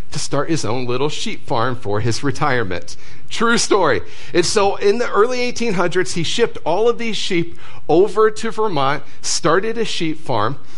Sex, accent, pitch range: male, American, 125-180 Hz